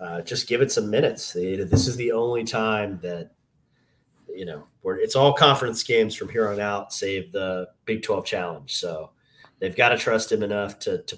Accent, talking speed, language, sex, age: American, 205 wpm, English, male, 30-49